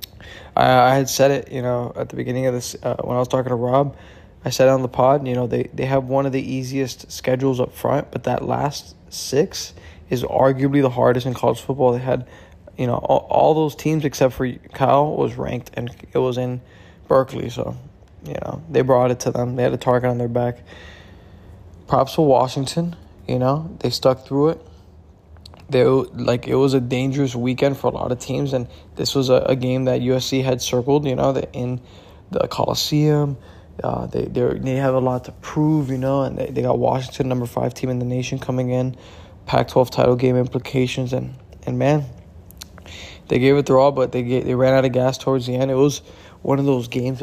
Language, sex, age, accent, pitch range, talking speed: English, male, 20-39, American, 120-135 Hz, 215 wpm